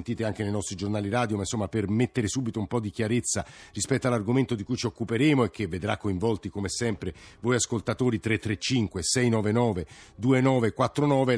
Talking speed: 165 wpm